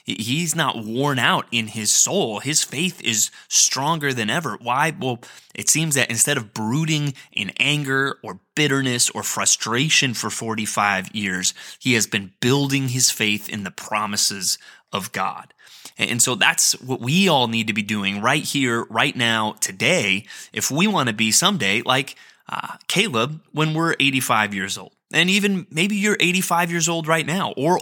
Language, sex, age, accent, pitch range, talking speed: English, male, 20-39, American, 115-160 Hz, 175 wpm